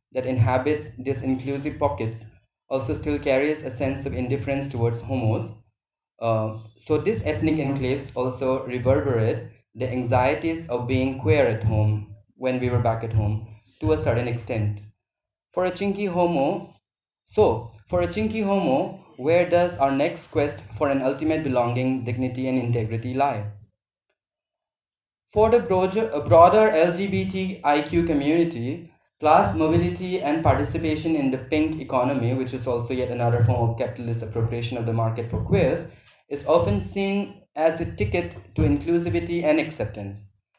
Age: 20-39